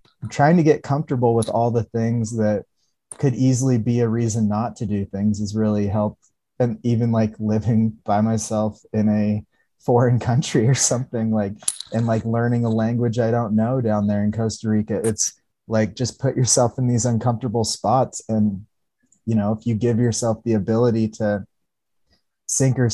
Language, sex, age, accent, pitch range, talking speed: English, male, 20-39, American, 105-120 Hz, 180 wpm